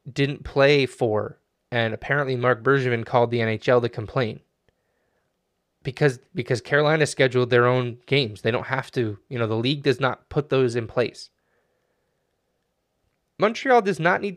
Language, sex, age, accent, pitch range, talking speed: English, male, 20-39, American, 125-155 Hz, 155 wpm